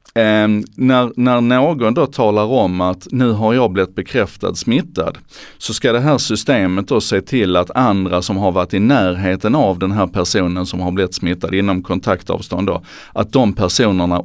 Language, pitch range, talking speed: Swedish, 90-120 Hz, 180 wpm